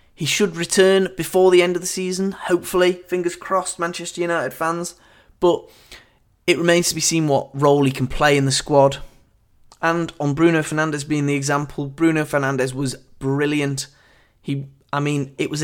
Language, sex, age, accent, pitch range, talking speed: English, male, 20-39, British, 135-165 Hz, 175 wpm